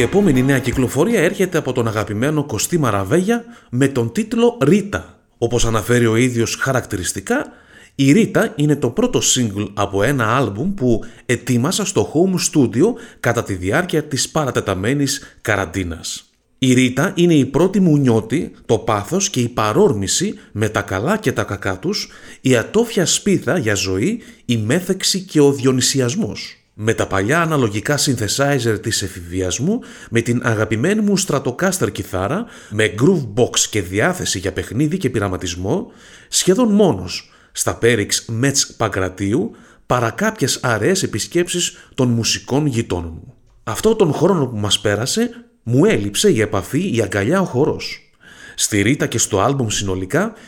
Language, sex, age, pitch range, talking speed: Greek, male, 30-49, 105-155 Hz, 150 wpm